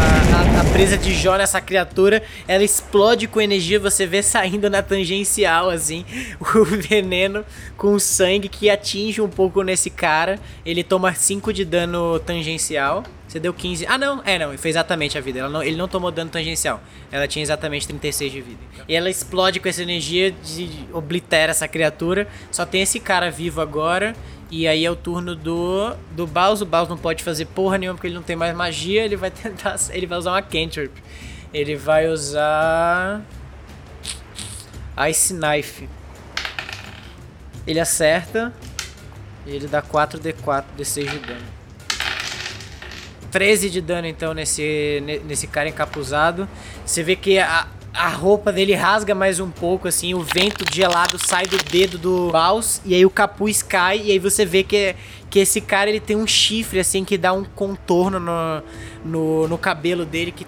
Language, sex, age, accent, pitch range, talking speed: Portuguese, male, 20-39, Brazilian, 150-190 Hz, 175 wpm